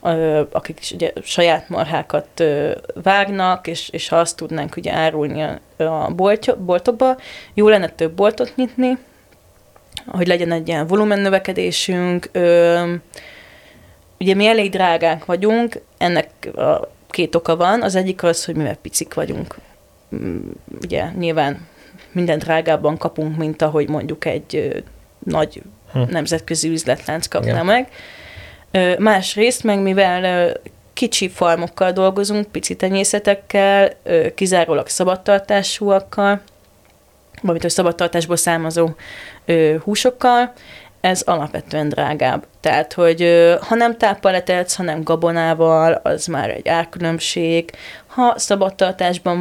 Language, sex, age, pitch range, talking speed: Hungarian, female, 30-49, 165-195 Hz, 105 wpm